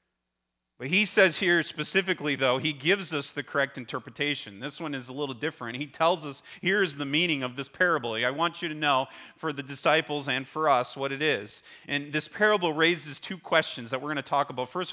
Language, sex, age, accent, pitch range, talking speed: English, male, 30-49, American, 140-170 Hz, 220 wpm